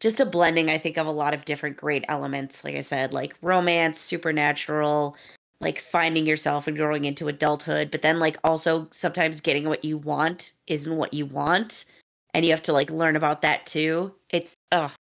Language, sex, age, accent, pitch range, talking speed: English, female, 20-39, American, 155-185 Hz, 190 wpm